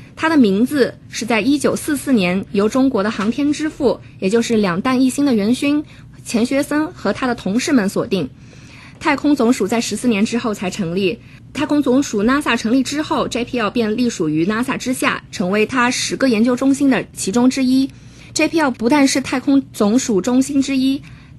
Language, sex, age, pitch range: Chinese, female, 20-39, 210-275 Hz